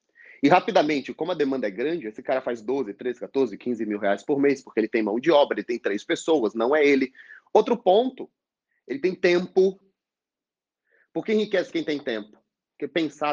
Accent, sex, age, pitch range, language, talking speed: Brazilian, male, 30-49, 115-180 Hz, Portuguese, 200 wpm